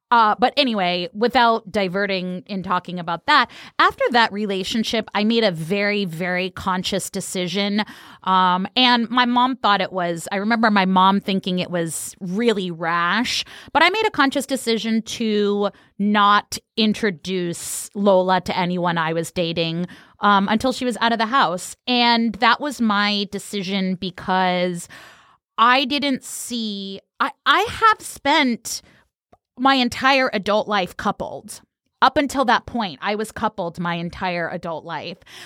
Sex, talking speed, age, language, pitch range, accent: female, 145 wpm, 30-49, English, 185-245 Hz, American